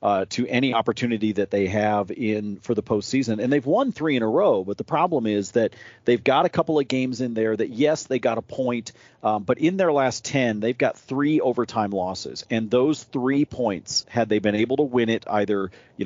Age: 40-59